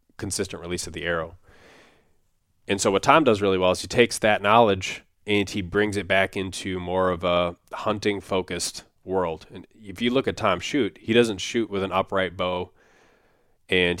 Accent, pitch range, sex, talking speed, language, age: American, 90-100 Hz, male, 190 wpm, English, 20-39